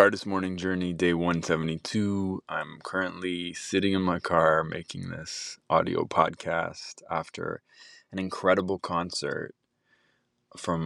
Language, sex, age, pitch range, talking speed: English, male, 20-39, 85-100 Hz, 110 wpm